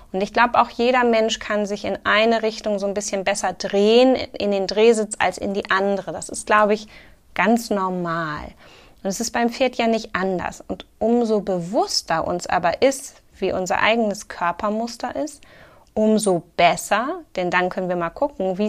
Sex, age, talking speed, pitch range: female, 20-39, 185 wpm, 190-235 Hz